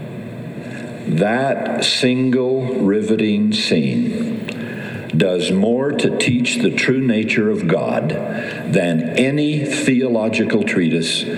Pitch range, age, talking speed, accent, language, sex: 95-145 Hz, 60-79, 90 wpm, American, English, male